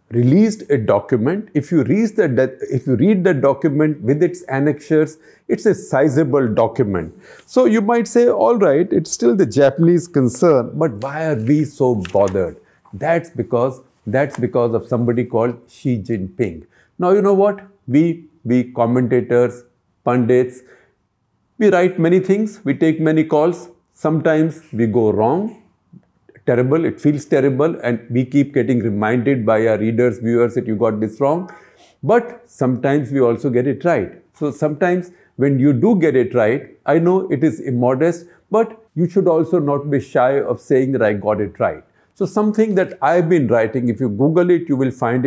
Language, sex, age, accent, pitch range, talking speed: English, male, 50-69, Indian, 120-170 Hz, 170 wpm